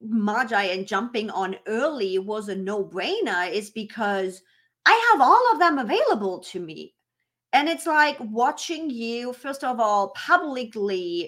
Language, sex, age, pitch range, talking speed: English, female, 30-49, 195-245 Hz, 145 wpm